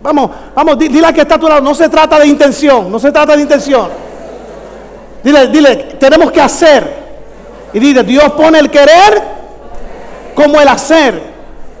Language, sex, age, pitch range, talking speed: English, male, 50-69, 285-330 Hz, 170 wpm